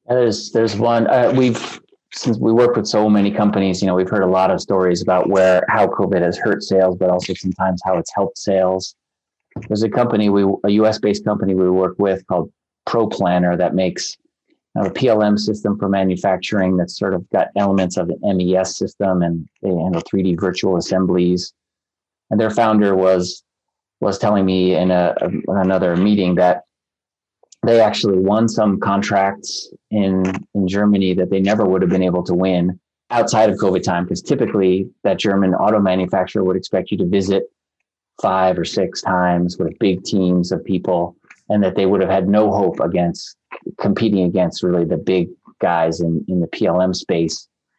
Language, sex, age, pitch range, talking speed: English, male, 30-49, 90-105 Hz, 180 wpm